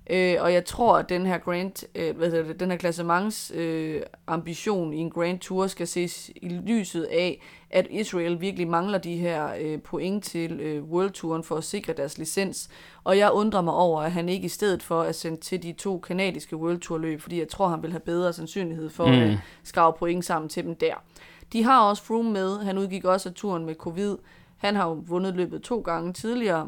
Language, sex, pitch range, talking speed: Danish, female, 165-190 Hz, 215 wpm